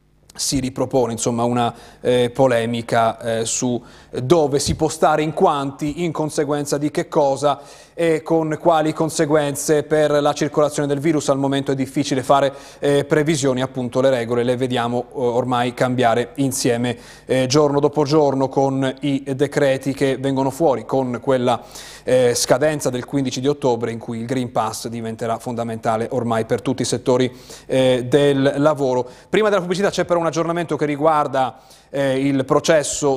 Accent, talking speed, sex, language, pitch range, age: native, 155 wpm, male, Italian, 125-155 Hz, 30-49